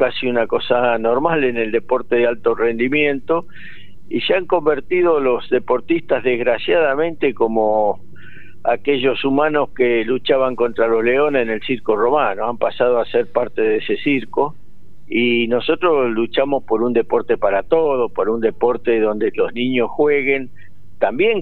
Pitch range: 115-175 Hz